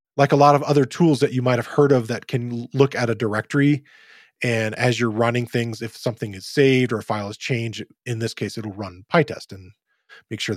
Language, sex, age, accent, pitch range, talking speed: English, male, 20-39, American, 110-135 Hz, 225 wpm